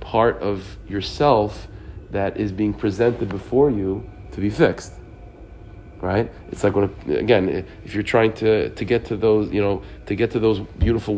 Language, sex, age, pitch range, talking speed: English, male, 40-59, 95-115 Hz, 170 wpm